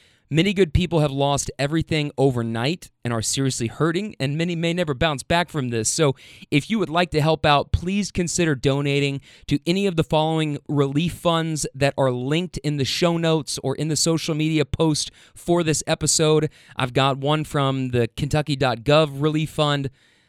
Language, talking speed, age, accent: English, 180 wpm, 30-49, American